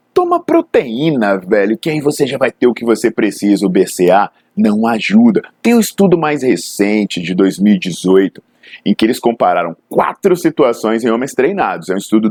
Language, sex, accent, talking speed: Portuguese, male, Brazilian, 175 wpm